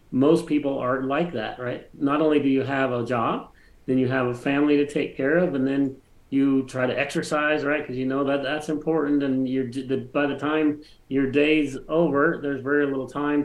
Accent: American